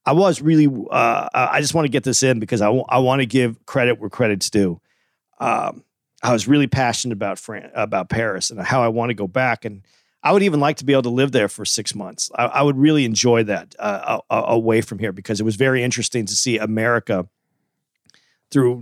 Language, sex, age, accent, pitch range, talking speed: English, male, 40-59, American, 110-135 Hz, 230 wpm